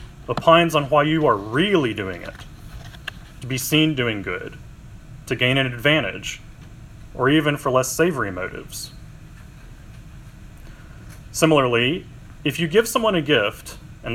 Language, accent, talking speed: English, American, 130 wpm